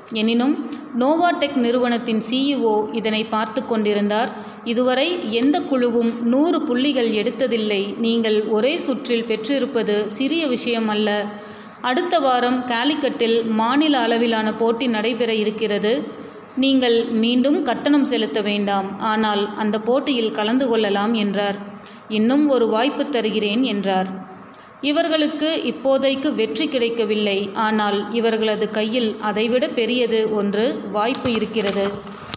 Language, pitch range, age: Tamil, 215-255 Hz, 30-49